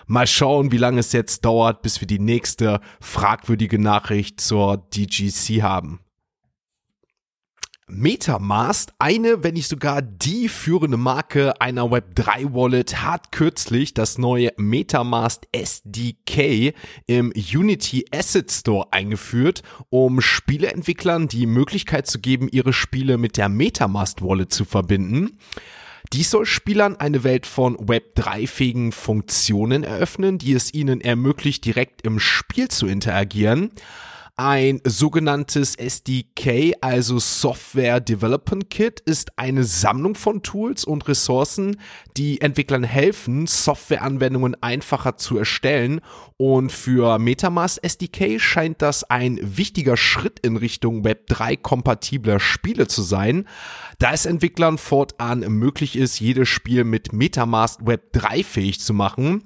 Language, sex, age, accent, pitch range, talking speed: German, male, 30-49, German, 110-145 Hz, 120 wpm